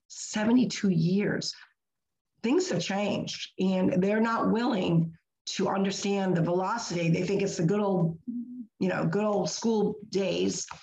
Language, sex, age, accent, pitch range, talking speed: English, female, 50-69, American, 185-215 Hz, 140 wpm